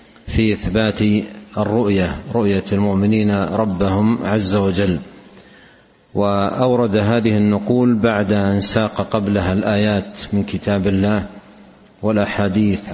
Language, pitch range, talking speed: Arabic, 100-110 Hz, 95 wpm